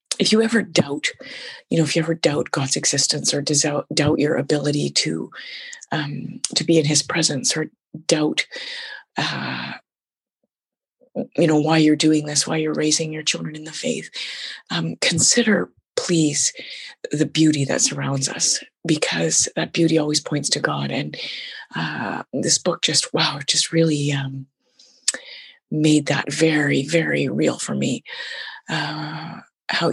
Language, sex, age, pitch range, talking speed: English, female, 30-49, 145-170 Hz, 145 wpm